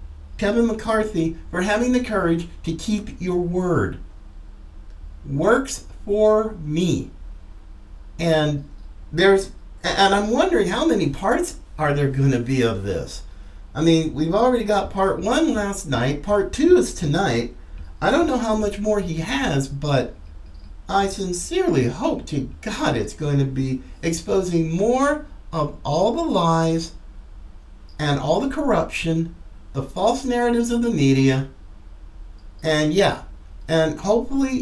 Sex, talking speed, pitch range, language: male, 135 wpm, 125-200 Hz, English